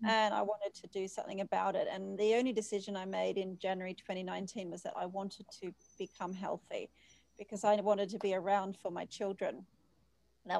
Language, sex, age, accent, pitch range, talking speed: English, female, 30-49, Australian, 195-225 Hz, 195 wpm